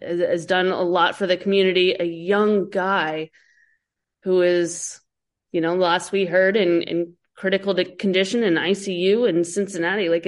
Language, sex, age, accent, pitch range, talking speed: English, female, 20-39, American, 175-210 Hz, 150 wpm